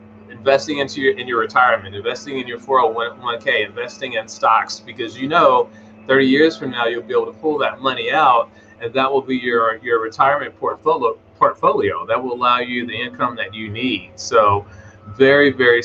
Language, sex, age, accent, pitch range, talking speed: English, male, 30-49, American, 115-140 Hz, 185 wpm